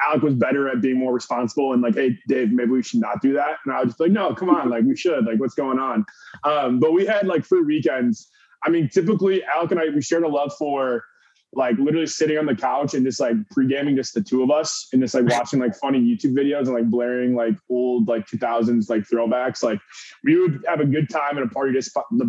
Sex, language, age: male, English, 20-39